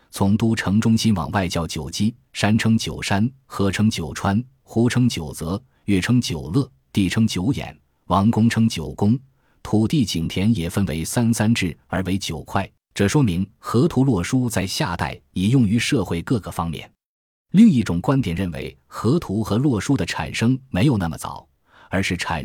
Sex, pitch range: male, 90-120 Hz